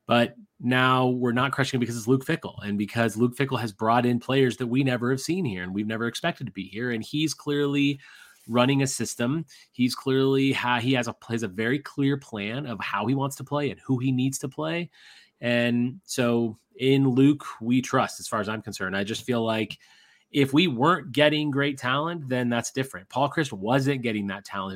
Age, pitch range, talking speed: 30-49, 120-145 Hz, 220 wpm